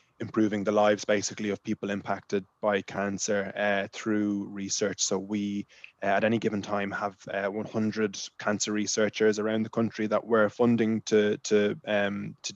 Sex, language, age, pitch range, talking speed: male, English, 20-39, 100-110 Hz, 160 wpm